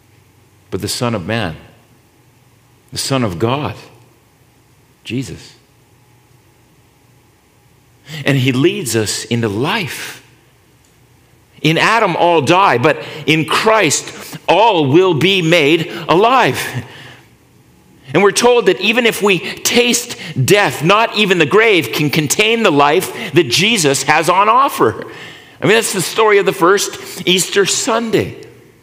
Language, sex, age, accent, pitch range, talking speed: English, male, 50-69, American, 130-195 Hz, 125 wpm